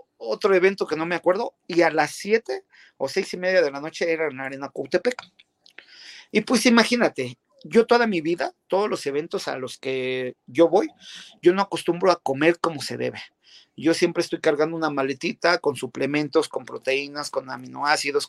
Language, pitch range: Spanish, 150-200 Hz